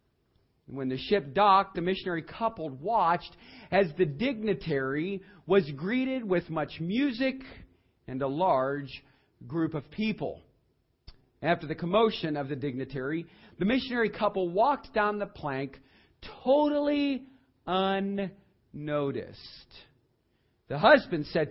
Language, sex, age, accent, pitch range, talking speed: English, male, 40-59, American, 115-185 Hz, 110 wpm